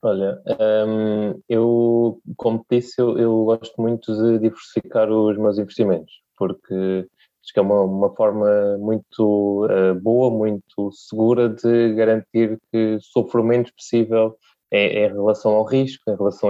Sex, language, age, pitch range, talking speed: male, Portuguese, 20-39, 105-120 Hz, 140 wpm